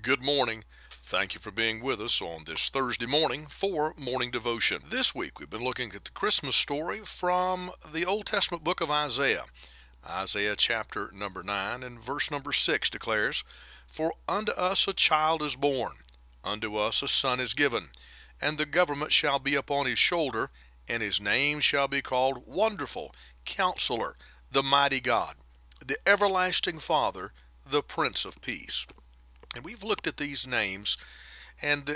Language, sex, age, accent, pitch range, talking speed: English, male, 40-59, American, 125-165 Hz, 160 wpm